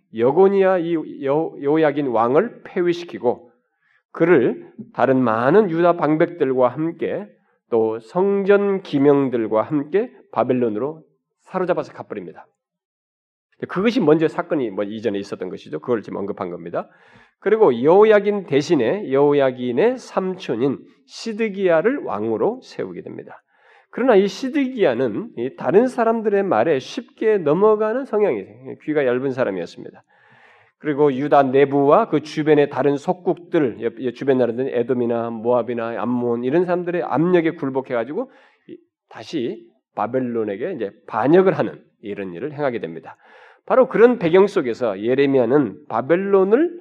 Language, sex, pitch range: Korean, male, 125-200 Hz